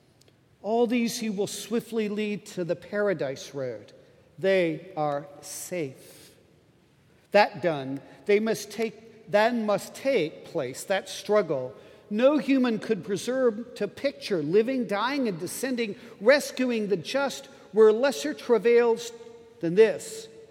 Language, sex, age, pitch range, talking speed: English, male, 50-69, 195-240 Hz, 125 wpm